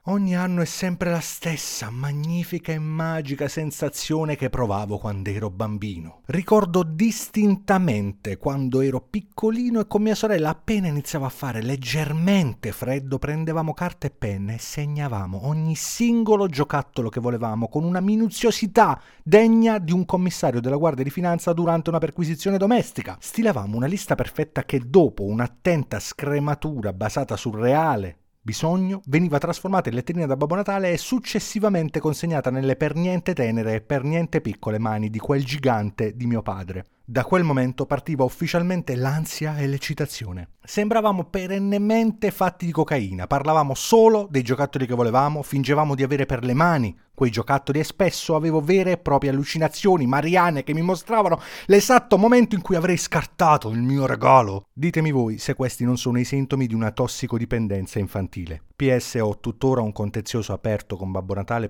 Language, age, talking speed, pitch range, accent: Italian, 30-49, 155 wpm, 115-175 Hz, native